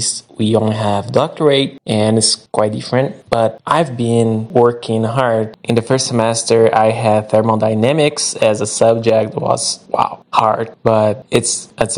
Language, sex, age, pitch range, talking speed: English, male, 20-39, 110-120 Hz, 145 wpm